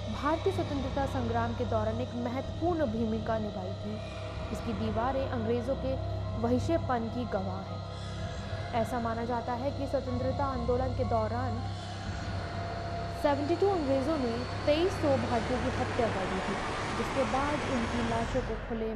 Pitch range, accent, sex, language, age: 170-255 Hz, native, female, Hindi, 20-39